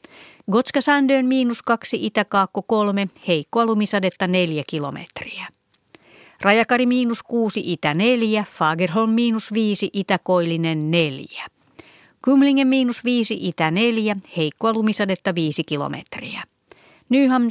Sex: female